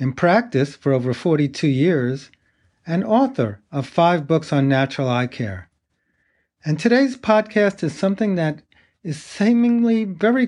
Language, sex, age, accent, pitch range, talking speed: English, male, 40-59, American, 135-195 Hz, 145 wpm